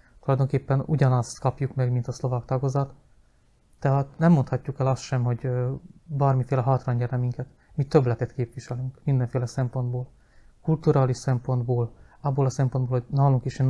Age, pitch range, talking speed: 30-49, 125-135 Hz, 145 wpm